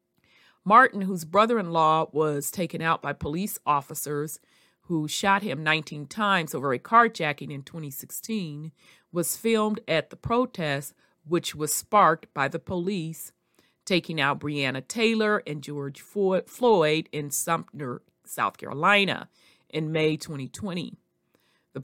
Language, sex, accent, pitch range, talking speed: English, female, American, 150-195 Hz, 125 wpm